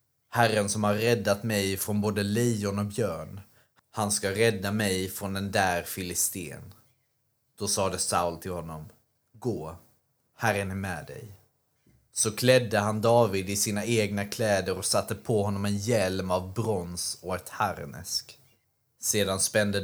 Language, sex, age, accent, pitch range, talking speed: Swedish, male, 30-49, native, 95-115 Hz, 150 wpm